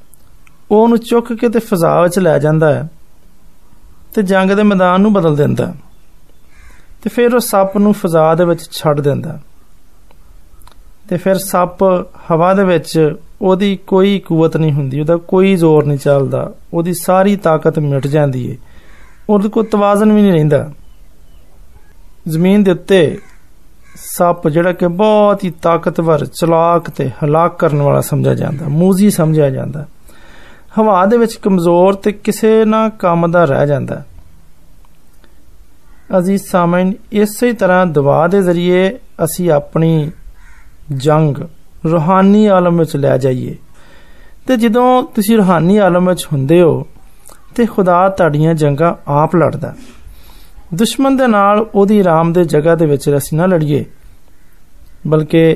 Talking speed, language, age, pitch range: 105 wpm, Hindi, 30-49, 145-195 Hz